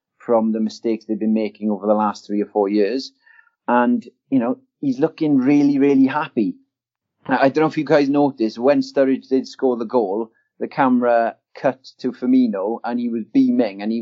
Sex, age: male, 30-49